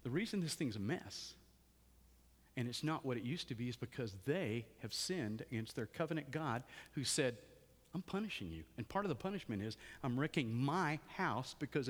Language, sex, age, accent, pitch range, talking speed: Swedish, male, 50-69, American, 115-165 Hz, 195 wpm